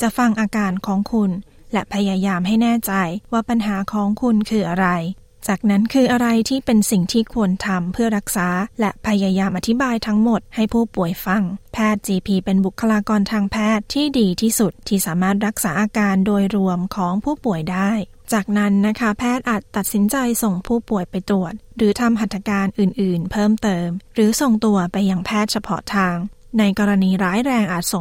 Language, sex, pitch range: Thai, female, 190-225 Hz